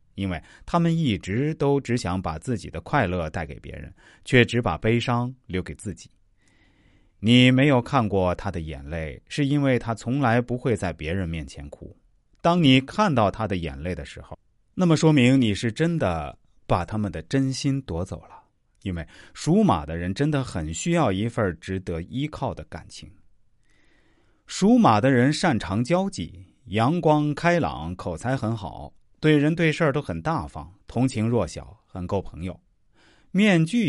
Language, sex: Chinese, male